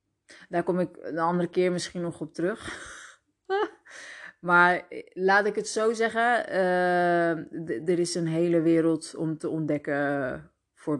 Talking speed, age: 140 wpm, 20-39